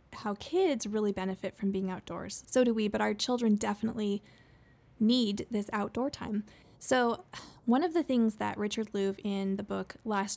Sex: female